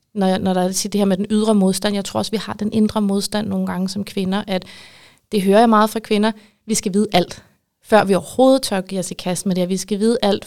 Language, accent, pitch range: Danish, native, 185-210 Hz